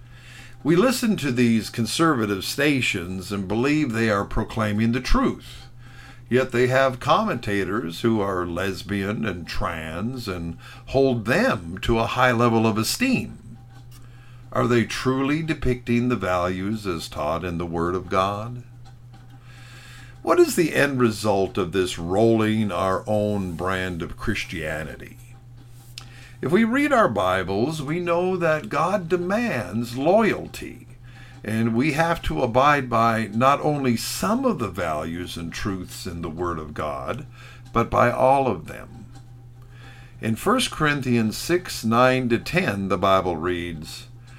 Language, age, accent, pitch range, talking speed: English, 50-69, American, 105-130 Hz, 135 wpm